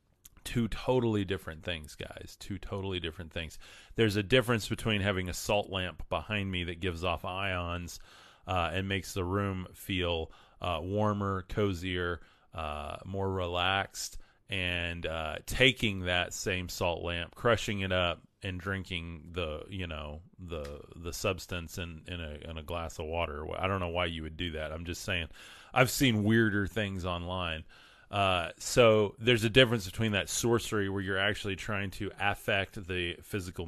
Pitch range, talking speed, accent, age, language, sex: 85-100 Hz, 165 wpm, American, 30-49, English, male